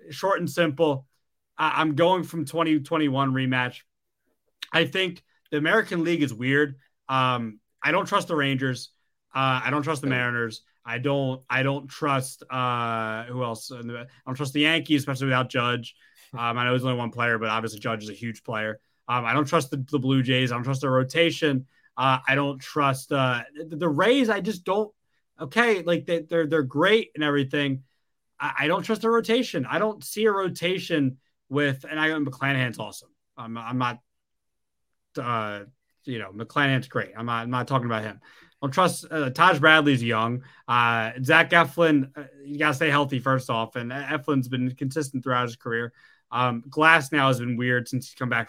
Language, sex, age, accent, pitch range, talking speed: English, male, 30-49, American, 125-155 Hz, 190 wpm